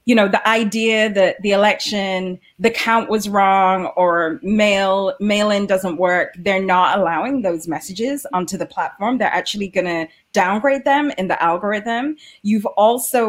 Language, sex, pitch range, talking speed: English, female, 185-215 Hz, 165 wpm